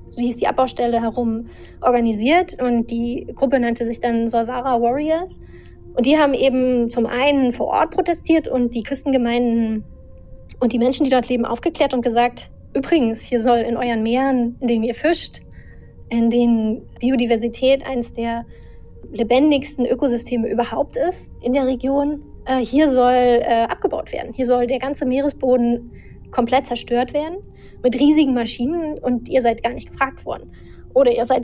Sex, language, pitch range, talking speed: female, German, 235-265 Hz, 155 wpm